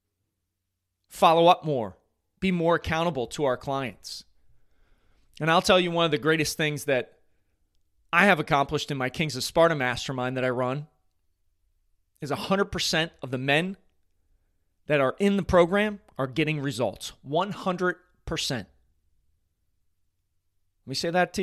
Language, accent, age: English, American, 30-49